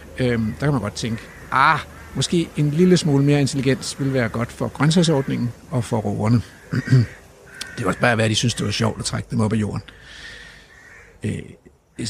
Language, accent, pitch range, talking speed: Danish, native, 120-175 Hz, 195 wpm